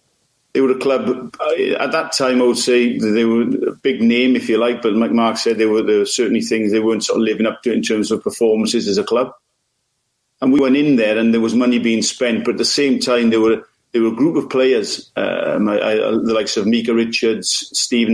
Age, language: 50-69, English